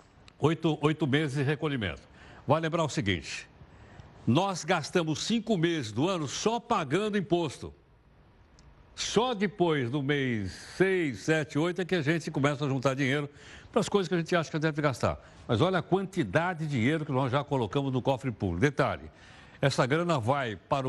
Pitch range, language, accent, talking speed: 120-165 Hz, Portuguese, Brazilian, 180 wpm